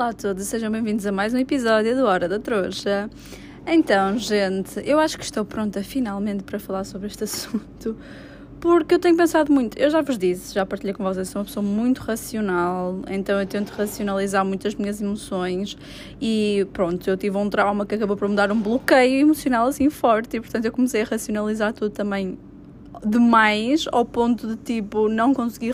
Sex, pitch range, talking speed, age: female, 200-240 Hz, 195 wpm, 20-39